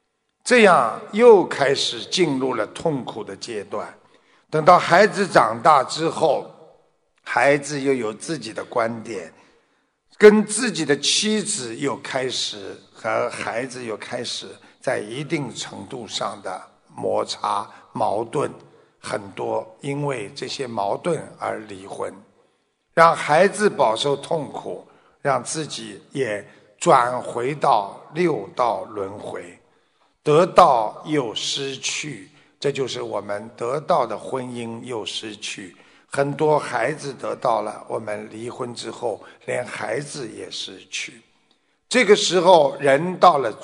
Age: 60-79